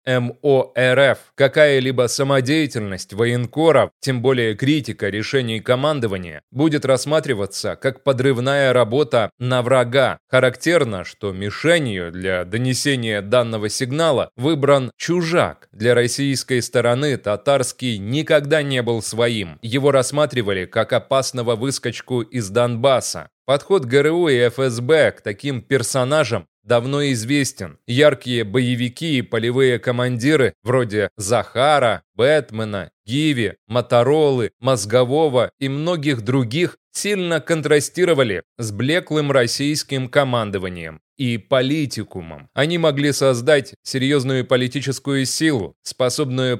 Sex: male